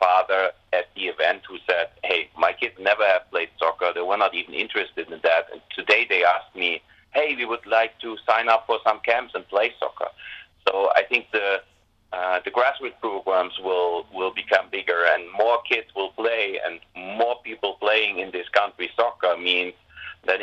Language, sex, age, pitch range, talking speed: English, male, 30-49, 95-110 Hz, 190 wpm